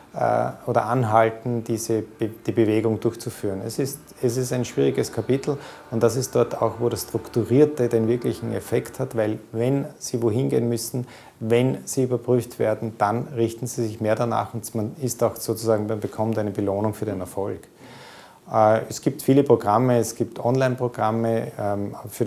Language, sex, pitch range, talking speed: German, male, 105-120 Hz, 165 wpm